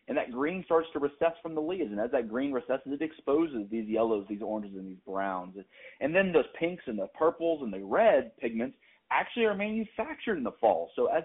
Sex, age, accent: male, 30-49, American